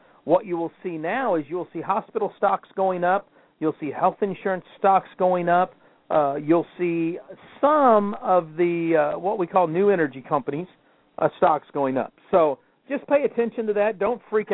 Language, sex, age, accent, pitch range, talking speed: English, male, 50-69, American, 150-195 Hz, 180 wpm